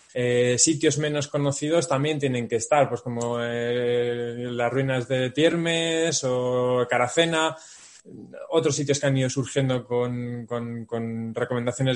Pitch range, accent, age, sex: 120-150 Hz, Spanish, 20-39, male